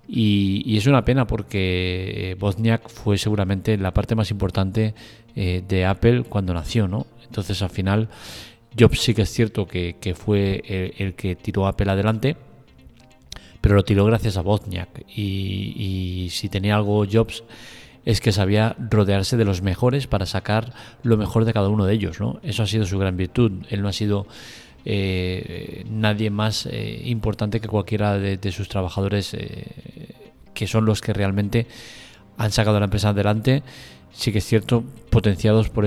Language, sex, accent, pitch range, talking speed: Spanish, male, Spanish, 100-110 Hz, 175 wpm